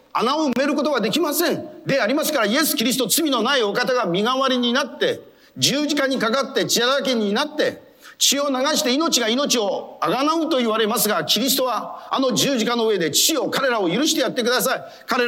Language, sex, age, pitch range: Japanese, male, 40-59, 195-280 Hz